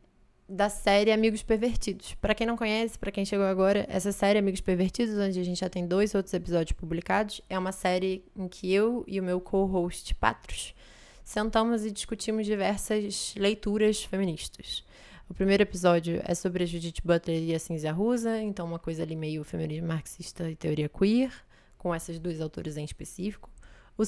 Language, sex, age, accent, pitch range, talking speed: Portuguese, female, 20-39, Brazilian, 170-205 Hz, 175 wpm